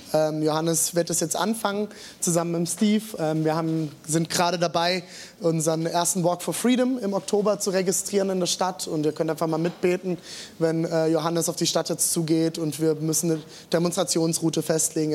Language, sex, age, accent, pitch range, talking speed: German, male, 20-39, German, 155-185 Hz, 175 wpm